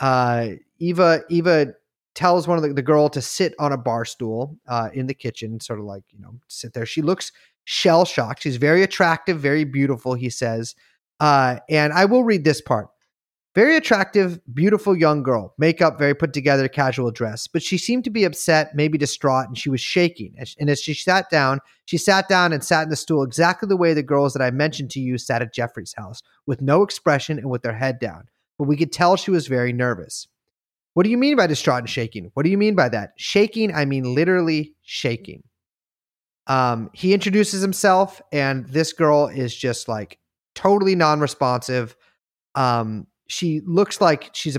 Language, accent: English, American